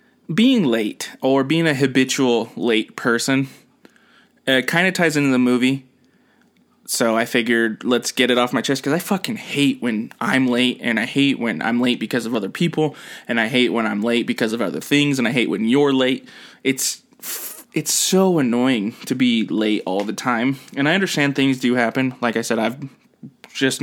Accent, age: American, 20-39